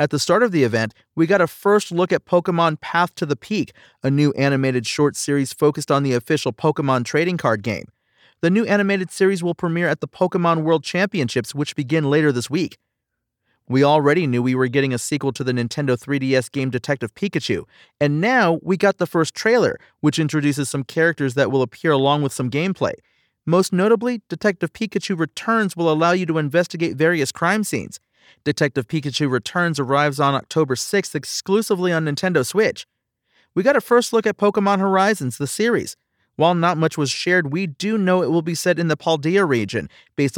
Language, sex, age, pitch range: English, male, 40-59, 140-185 Hz